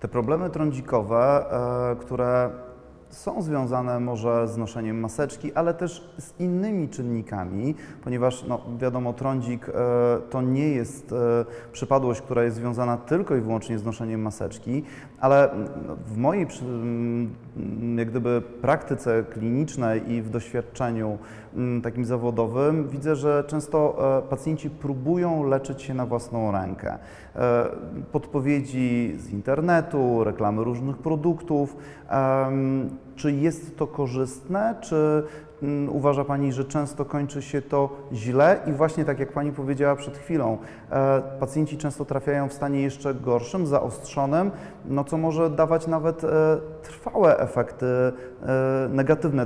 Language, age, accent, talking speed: Polish, 30-49, native, 115 wpm